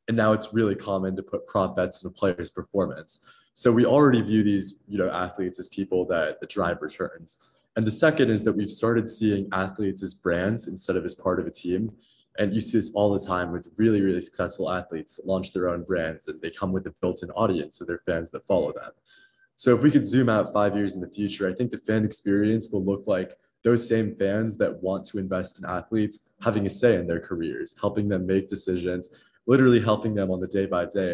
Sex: male